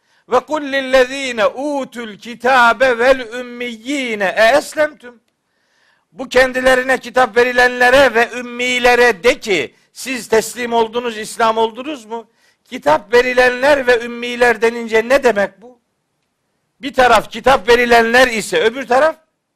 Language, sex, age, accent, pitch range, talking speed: Turkish, male, 60-79, native, 230-265 Hz, 105 wpm